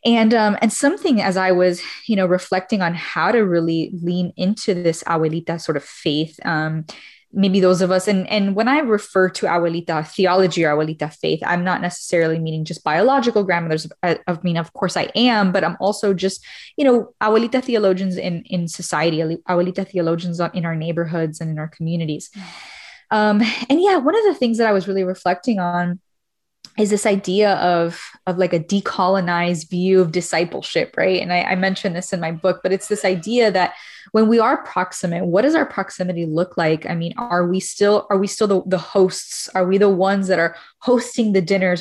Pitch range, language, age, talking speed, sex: 175-205 Hz, English, 20-39, 200 wpm, female